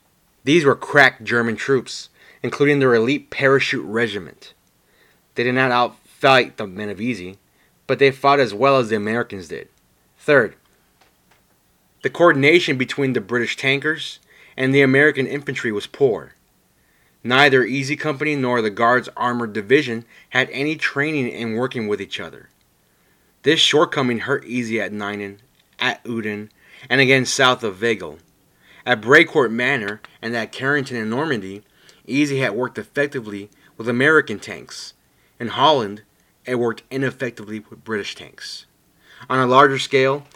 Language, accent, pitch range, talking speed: English, American, 115-140 Hz, 145 wpm